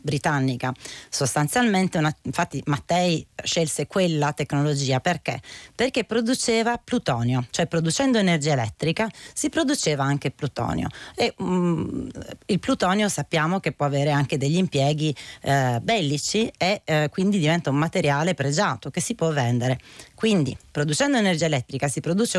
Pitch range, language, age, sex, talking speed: 145-200 Hz, Italian, 30-49, female, 135 wpm